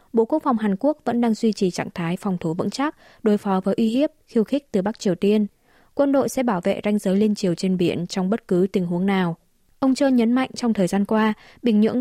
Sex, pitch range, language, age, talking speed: female, 185-235 Hz, Vietnamese, 20-39, 265 wpm